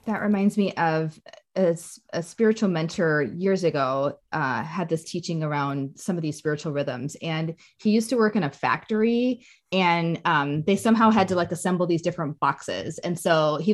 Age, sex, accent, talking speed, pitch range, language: 20-39, female, American, 185 wpm, 165-220 Hz, English